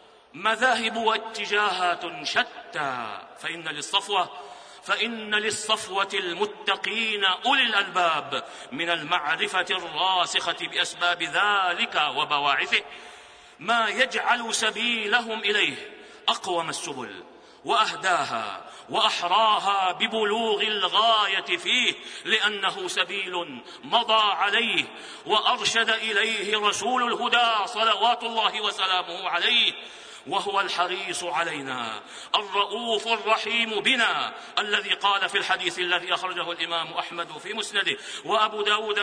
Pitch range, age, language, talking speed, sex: 185-225 Hz, 50-69, Arabic, 85 wpm, male